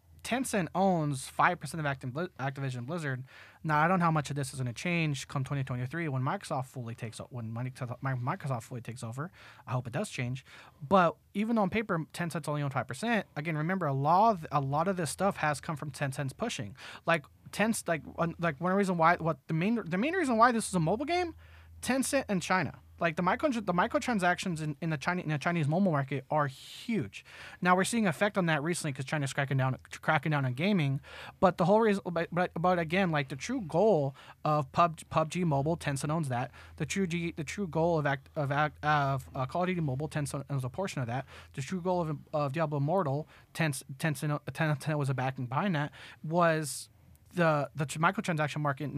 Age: 30-49